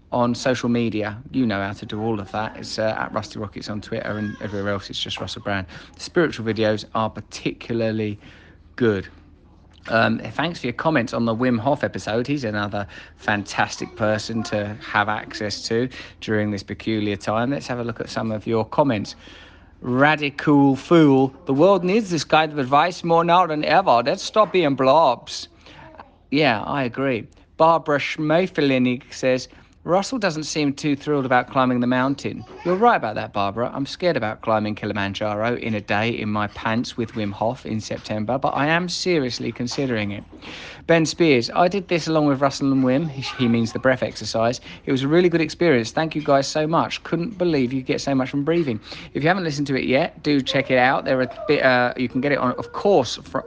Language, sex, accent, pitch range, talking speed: English, male, British, 110-145 Hz, 200 wpm